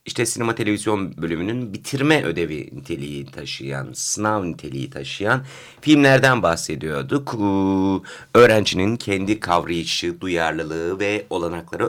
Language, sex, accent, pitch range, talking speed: Turkish, male, native, 95-135 Hz, 100 wpm